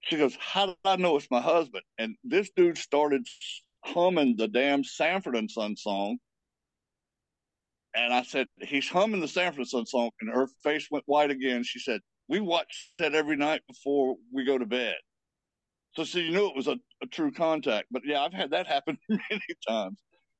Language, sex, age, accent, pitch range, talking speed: English, male, 60-79, American, 130-210 Hz, 195 wpm